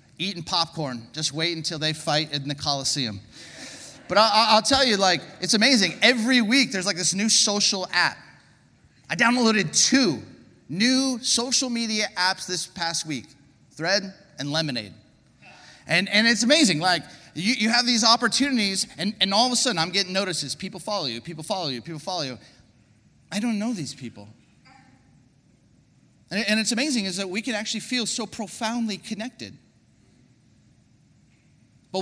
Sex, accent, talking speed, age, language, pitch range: male, American, 160 wpm, 30-49, English, 140-220 Hz